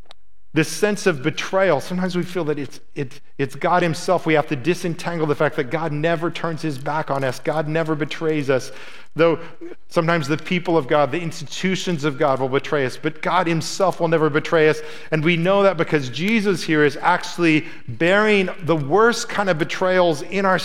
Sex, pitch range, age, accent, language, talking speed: male, 125-170 Hz, 40-59, American, English, 200 wpm